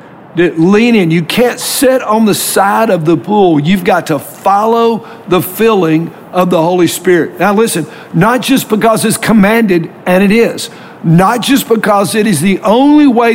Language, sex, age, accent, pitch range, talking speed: English, male, 60-79, American, 170-220 Hz, 175 wpm